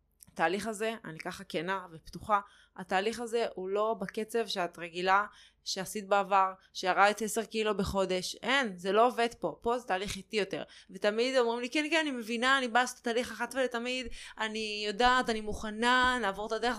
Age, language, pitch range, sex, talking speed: 20-39, Hebrew, 175-225 Hz, female, 180 wpm